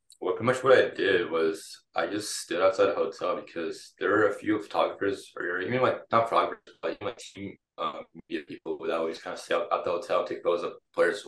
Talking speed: 240 wpm